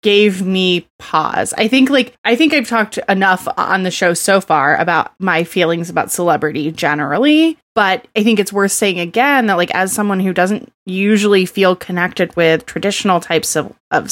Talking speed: 185 wpm